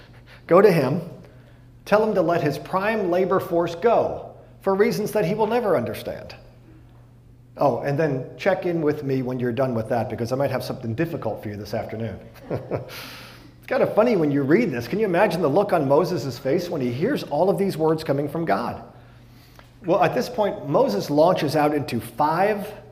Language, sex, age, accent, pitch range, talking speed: English, male, 40-59, American, 120-170 Hz, 200 wpm